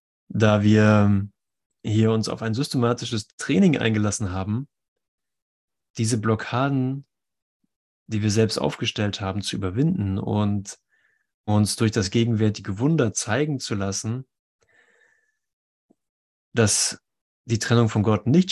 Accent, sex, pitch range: German, male, 105-125 Hz